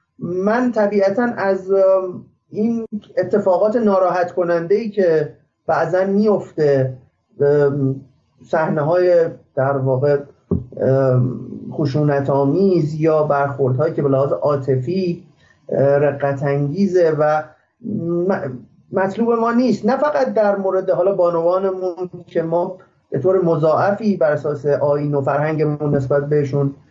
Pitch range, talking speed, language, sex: 145-200 Hz, 100 wpm, Persian, male